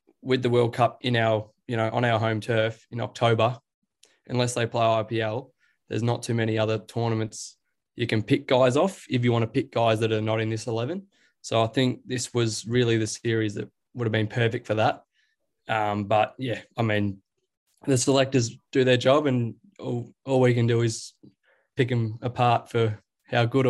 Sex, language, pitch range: male, English, 115-130 Hz